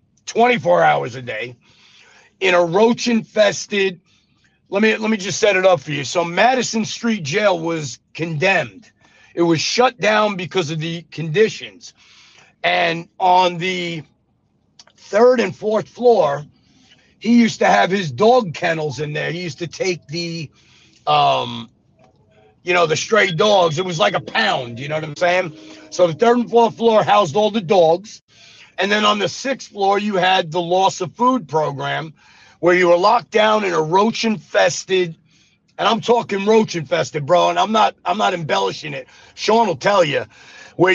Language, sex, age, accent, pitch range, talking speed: English, male, 40-59, American, 160-215 Hz, 175 wpm